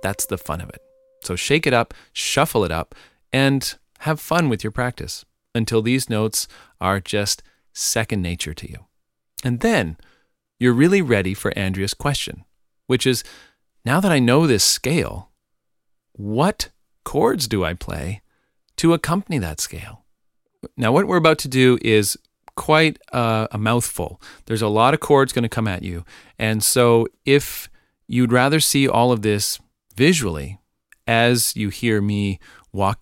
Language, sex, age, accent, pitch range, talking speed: English, male, 40-59, American, 100-135 Hz, 160 wpm